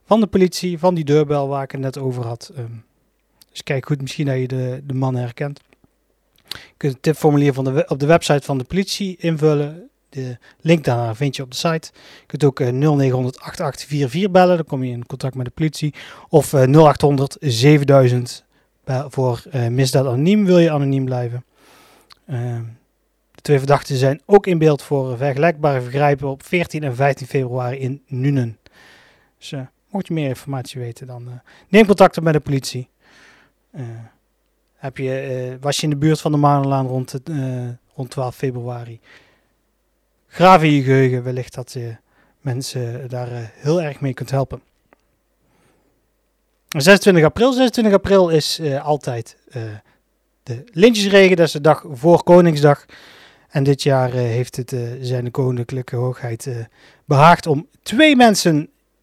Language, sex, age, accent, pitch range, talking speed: Dutch, male, 30-49, Dutch, 125-155 Hz, 170 wpm